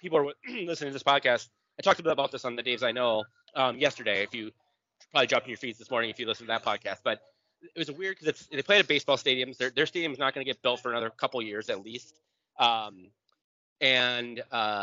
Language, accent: English, American